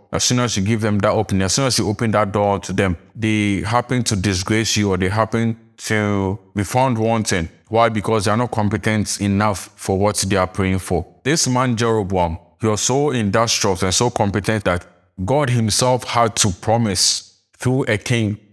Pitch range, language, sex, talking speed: 100-115 Hz, English, male, 200 wpm